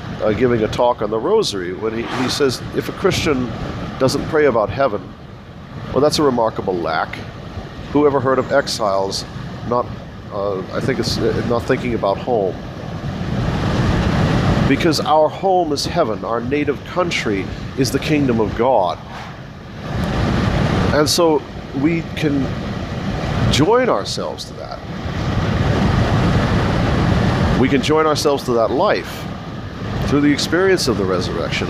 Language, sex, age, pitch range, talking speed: English, male, 50-69, 115-150 Hz, 135 wpm